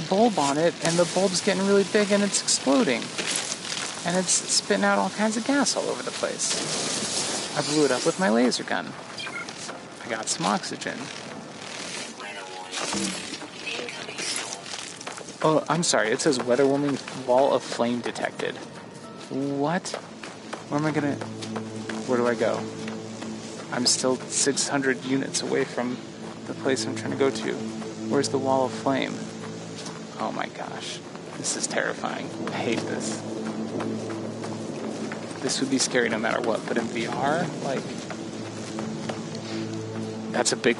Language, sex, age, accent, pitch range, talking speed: English, male, 30-49, American, 110-140 Hz, 140 wpm